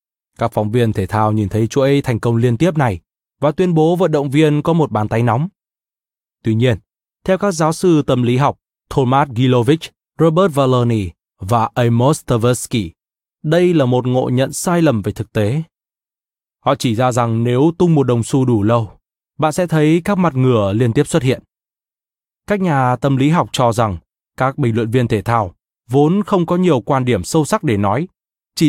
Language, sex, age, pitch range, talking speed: Vietnamese, male, 20-39, 115-155 Hz, 200 wpm